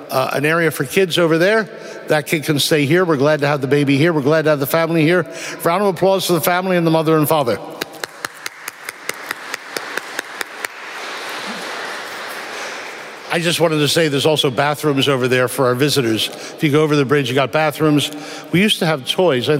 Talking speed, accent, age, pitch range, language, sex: 200 wpm, American, 60-79, 145-180 Hz, English, male